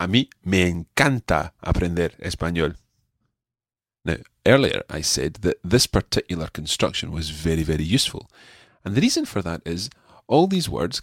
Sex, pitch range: male, 85-120 Hz